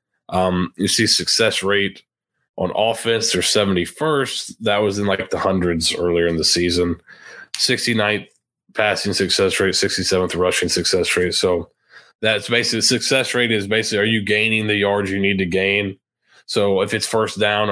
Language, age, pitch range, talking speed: English, 30-49, 95-115 Hz, 165 wpm